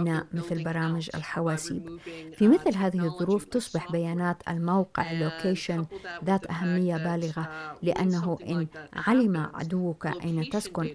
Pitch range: 165-190 Hz